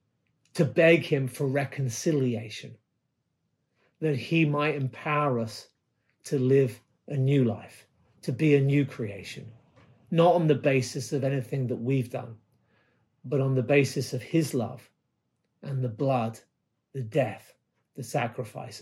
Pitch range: 125-160 Hz